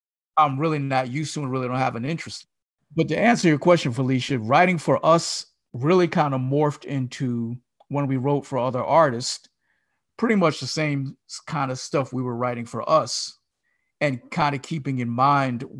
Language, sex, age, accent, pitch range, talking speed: English, male, 50-69, American, 125-145 Hz, 185 wpm